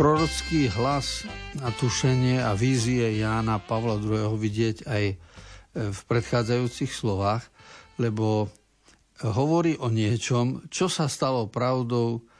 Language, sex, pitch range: Slovak, male, 105-125 Hz